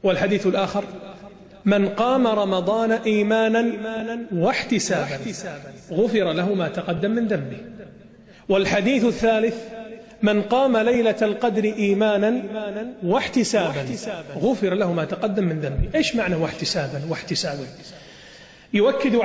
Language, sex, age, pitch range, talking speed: Arabic, male, 40-59, 185-225 Hz, 100 wpm